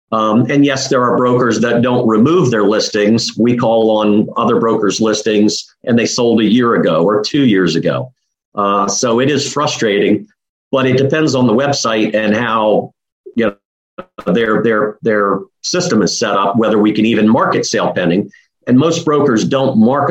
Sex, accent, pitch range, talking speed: male, American, 105-135 Hz, 180 wpm